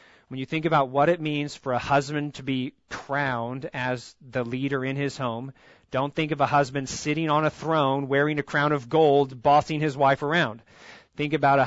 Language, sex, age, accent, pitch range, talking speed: English, male, 30-49, American, 120-150 Hz, 205 wpm